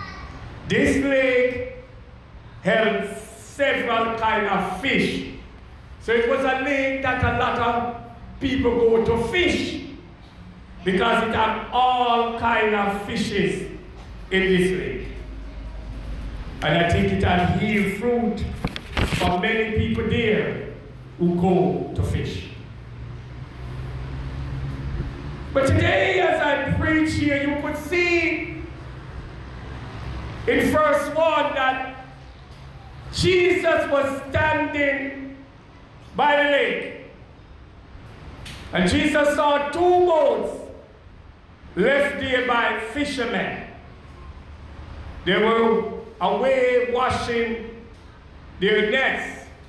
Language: English